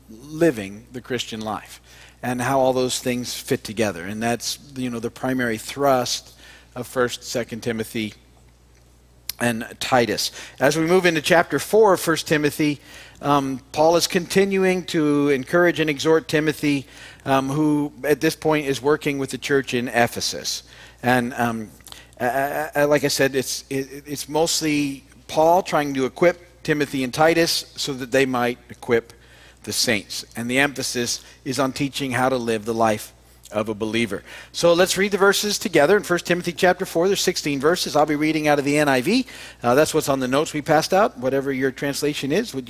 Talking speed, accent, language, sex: 175 wpm, American, English, male